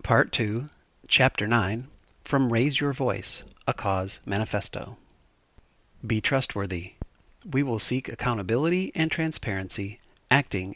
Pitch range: 100-130 Hz